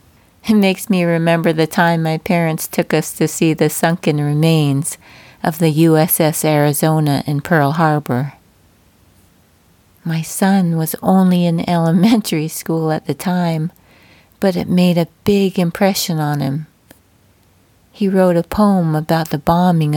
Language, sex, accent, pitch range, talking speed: English, female, American, 145-180 Hz, 140 wpm